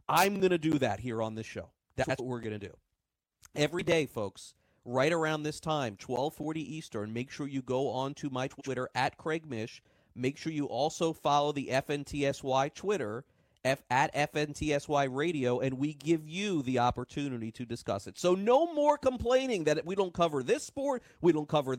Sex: male